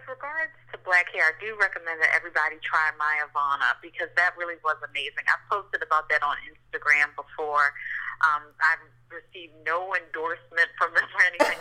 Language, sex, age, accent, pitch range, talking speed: English, female, 40-59, American, 150-175 Hz, 175 wpm